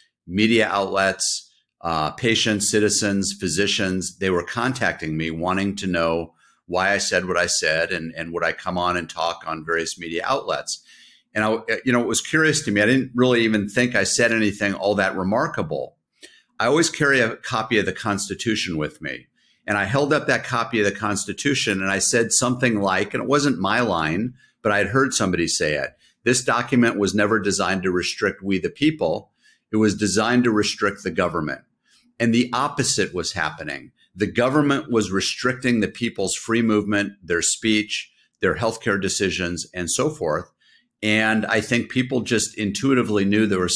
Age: 50-69